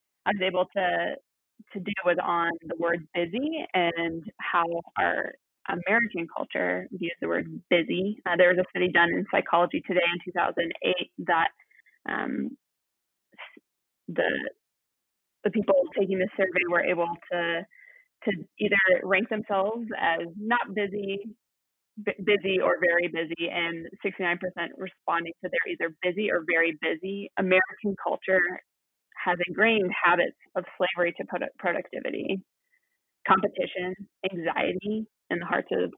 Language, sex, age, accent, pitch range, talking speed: English, female, 20-39, American, 175-210 Hz, 130 wpm